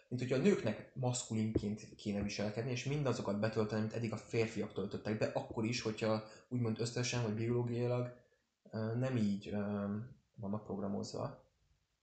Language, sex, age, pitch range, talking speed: Hungarian, male, 20-39, 105-120 Hz, 135 wpm